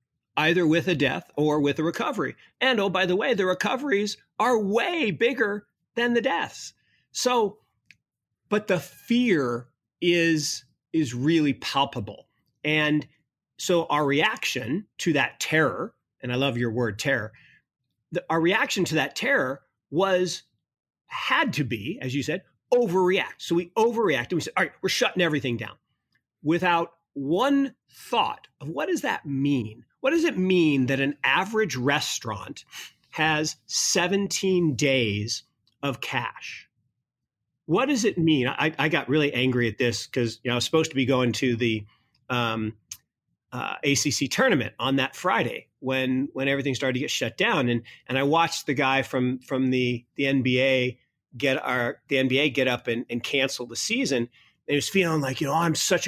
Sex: male